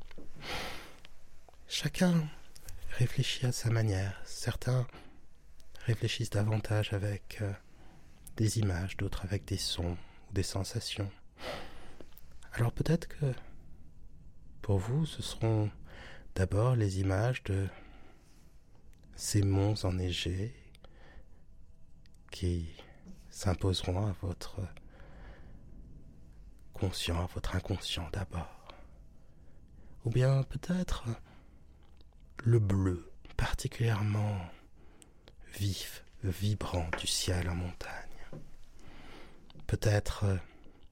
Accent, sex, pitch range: French, male, 90-115 Hz